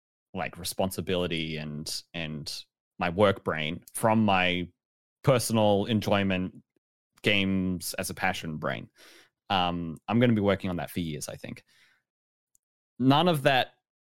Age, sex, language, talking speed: 20-39, male, English, 130 wpm